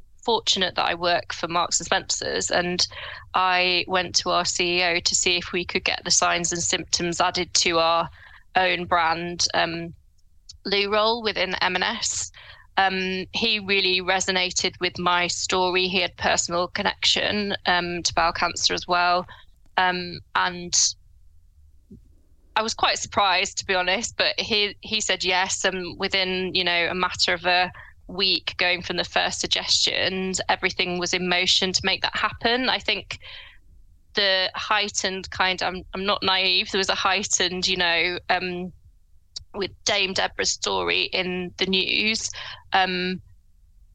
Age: 20-39